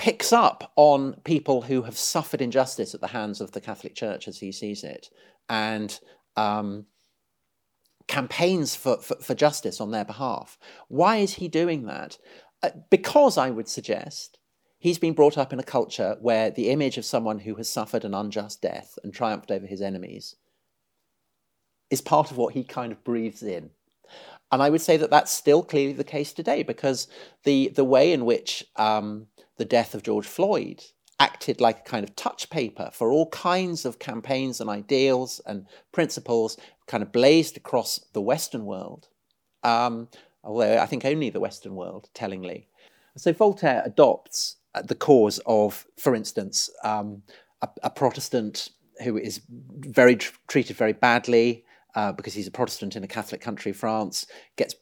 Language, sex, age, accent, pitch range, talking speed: English, male, 40-59, British, 110-145 Hz, 170 wpm